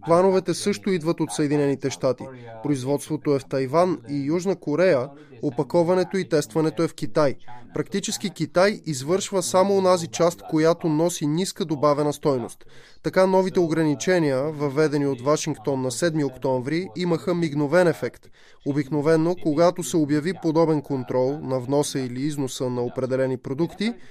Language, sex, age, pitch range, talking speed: Bulgarian, male, 20-39, 145-180 Hz, 135 wpm